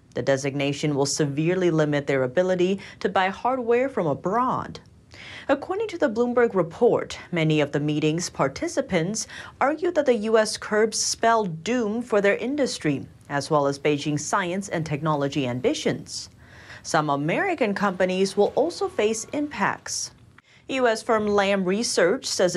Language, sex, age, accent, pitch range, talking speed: English, female, 30-49, American, 155-240 Hz, 140 wpm